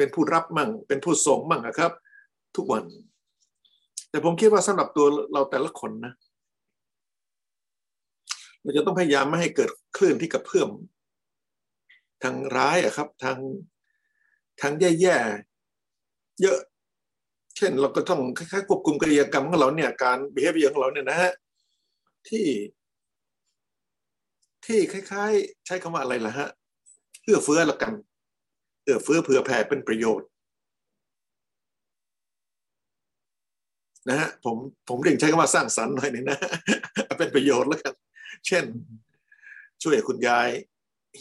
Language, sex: Thai, male